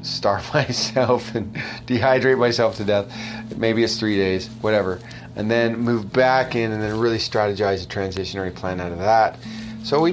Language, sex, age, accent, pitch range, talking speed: English, male, 30-49, American, 100-120 Hz, 170 wpm